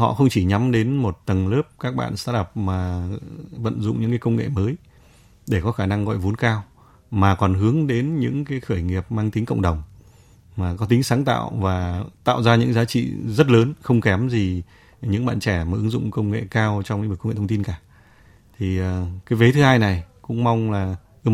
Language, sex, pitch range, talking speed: Vietnamese, male, 95-120 Hz, 225 wpm